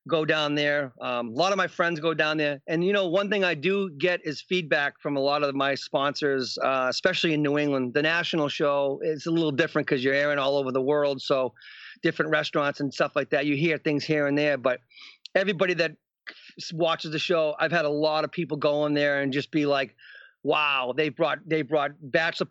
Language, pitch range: English, 145-175 Hz